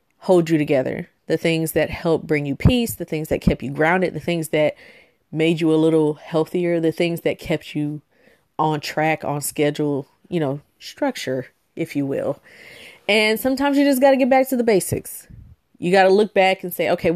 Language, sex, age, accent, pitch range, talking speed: English, female, 30-49, American, 150-185 Hz, 205 wpm